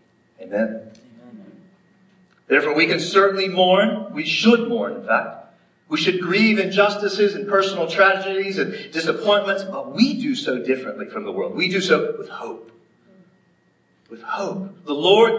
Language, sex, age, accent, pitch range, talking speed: English, male, 40-59, American, 160-205 Hz, 145 wpm